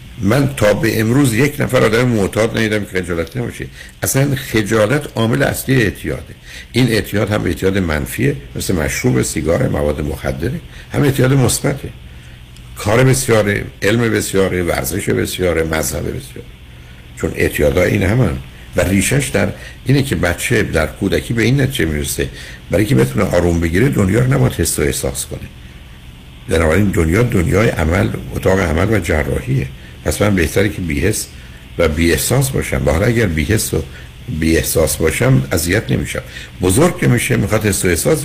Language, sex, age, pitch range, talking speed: Persian, male, 60-79, 70-110 Hz, 150 wpm